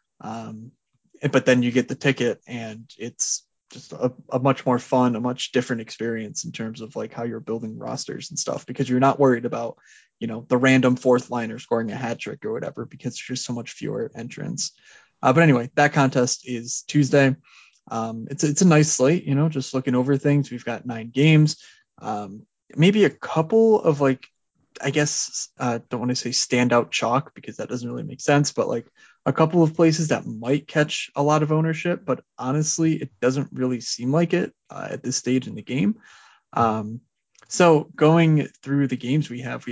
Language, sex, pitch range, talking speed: English, male, 120-150 Hz, 200 wpm